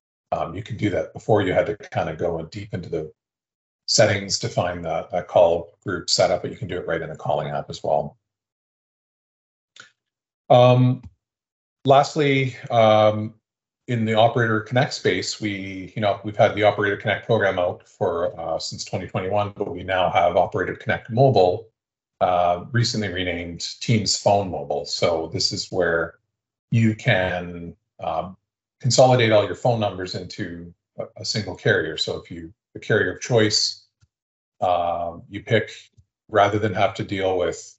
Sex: male